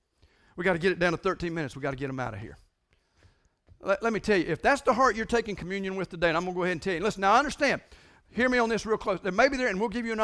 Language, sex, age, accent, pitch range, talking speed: English, male, 50-69, American, 160-205 Hz, 340 wpm